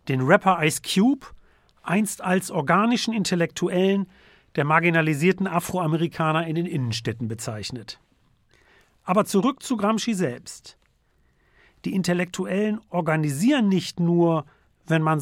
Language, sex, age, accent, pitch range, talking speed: German, male, 40-59, German, 125-200 Hz, 105 wpm